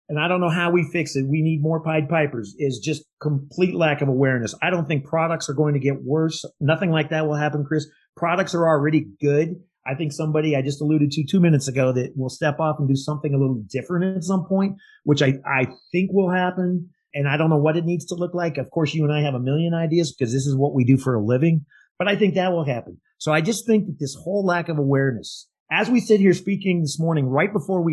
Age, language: 40-59, English